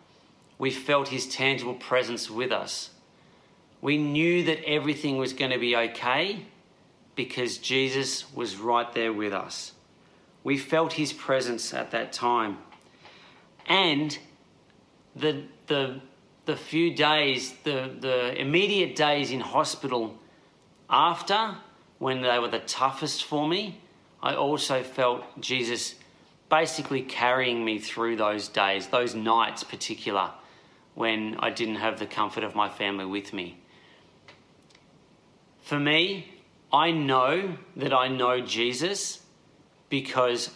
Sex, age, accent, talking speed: male, 40-59, Australian, 125 wpm